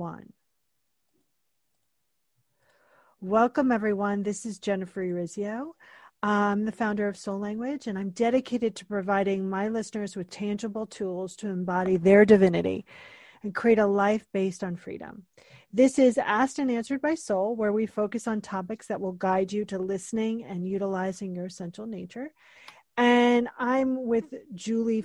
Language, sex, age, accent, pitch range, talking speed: English, female, 40-59, American, 200-250 Hz, 145 wpm